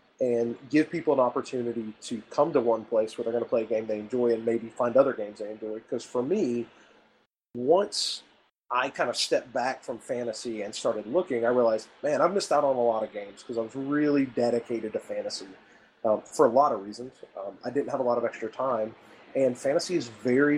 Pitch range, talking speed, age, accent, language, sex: 115-135 Hz, 225 wpm, 30-49, American, English, male